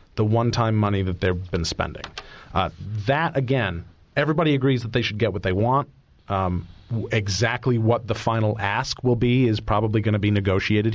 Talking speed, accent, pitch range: 180 wpm, American, 100-120 Hz